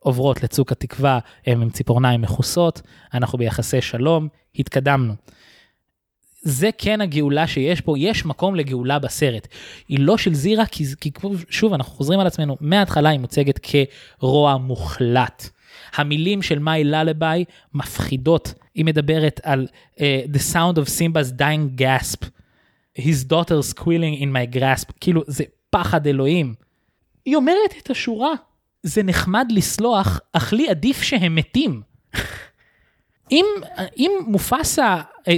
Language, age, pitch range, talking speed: Hebrew, 20-39, 135-200 Hz, 125 wpm